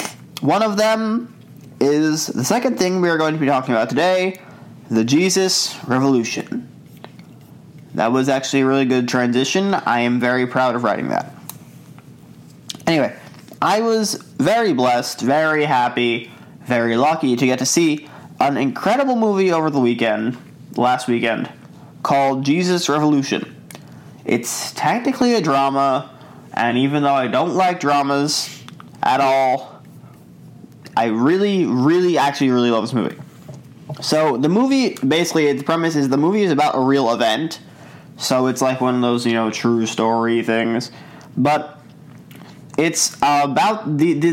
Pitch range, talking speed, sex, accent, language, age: 125-160 Hz, 145 wpm, male, American, English, 20-39